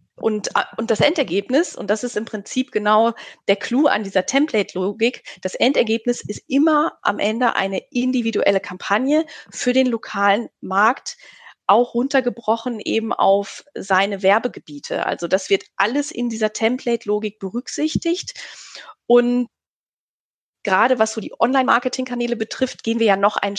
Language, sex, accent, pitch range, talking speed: German, female, German, 205-260 Hz, 135 wpm